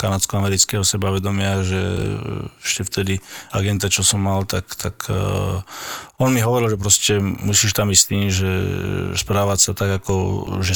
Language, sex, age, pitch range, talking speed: Slovak, male, 20-39, 95-110 Hz, 145 wpm